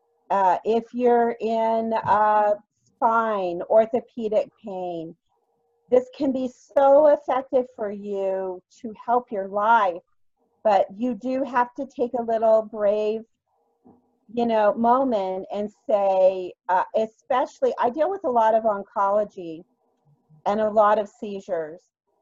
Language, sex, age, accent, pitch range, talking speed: English, female, 40-59, American, 195-245 Hz, 125 wpm